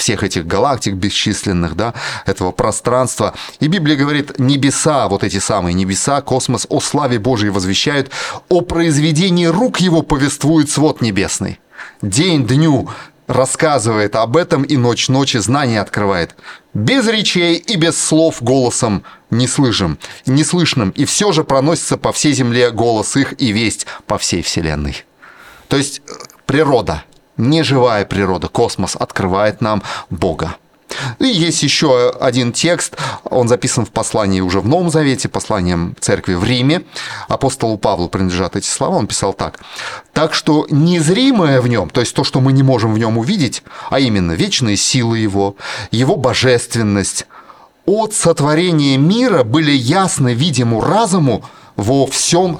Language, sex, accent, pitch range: Russian, male, native, 110-155 Hz